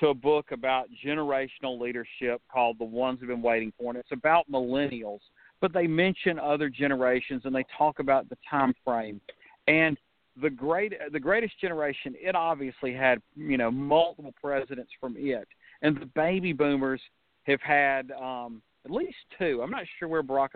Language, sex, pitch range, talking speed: English, male, 130-165 Hz, 170 wpm